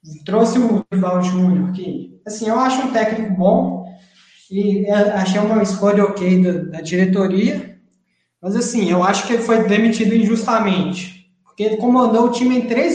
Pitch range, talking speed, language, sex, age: 185-230 Hz, 160 wpm, Portuguese, male, 20-39